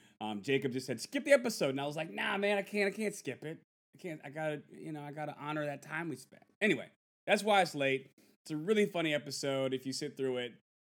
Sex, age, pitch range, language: male, 30-49, 115-155 Hz, English